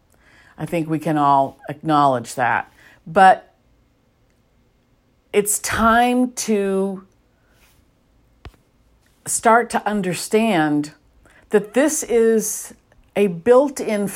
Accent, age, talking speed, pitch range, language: American, 50-69, 80 wpm, 170-220 Hz, English